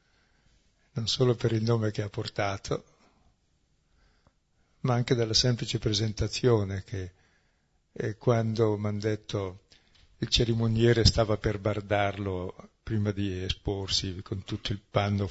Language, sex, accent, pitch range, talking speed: Italian, male, native, 100-125 Hz, 120 wpm